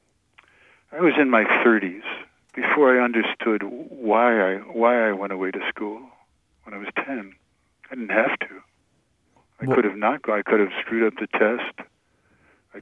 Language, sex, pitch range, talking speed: English, male, 100-125 Hz, 170 wpm